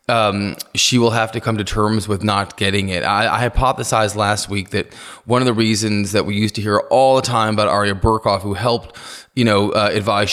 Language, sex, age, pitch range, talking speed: English, male, 20-39, 95-110 Hz, 225 wpm